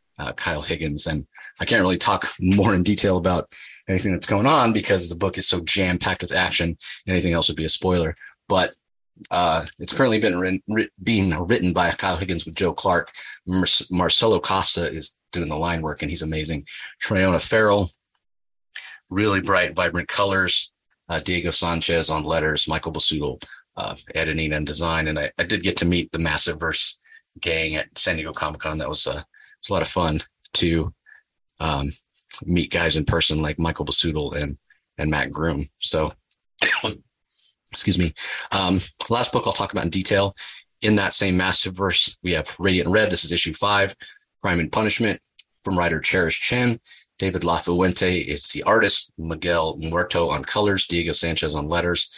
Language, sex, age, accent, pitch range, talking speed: English, male, 30-49, American, 80-95 Hz, 175 wpm